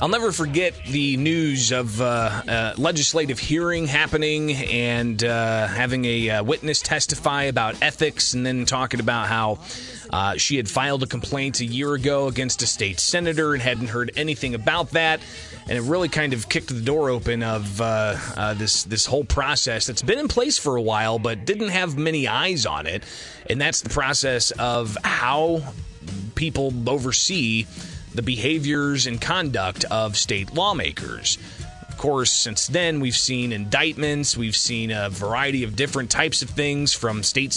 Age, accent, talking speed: 30-49, American, 170 wpm